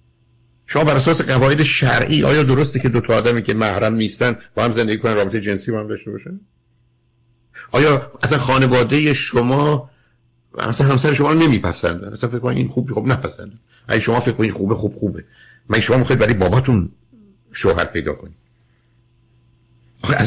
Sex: male